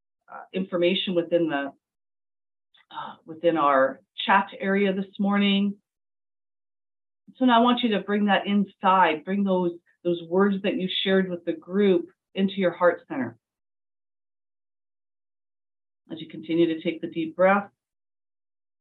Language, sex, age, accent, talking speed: English, female, 40-59, American, 135 wpm